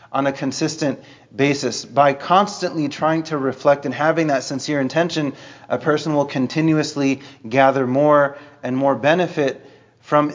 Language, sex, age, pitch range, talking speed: English, male, 30-49, 135-160 Hz, 140 wpm